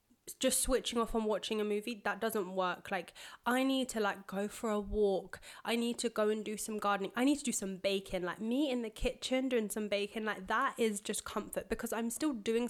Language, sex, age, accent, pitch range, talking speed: English, female, 10-29, British, 205-245 Hz, 235 wpm